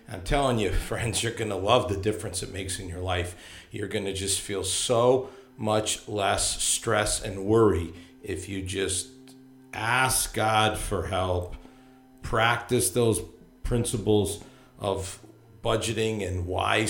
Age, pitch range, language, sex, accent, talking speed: 50-69, 95-115 Hz, English, male, American, 140 wpm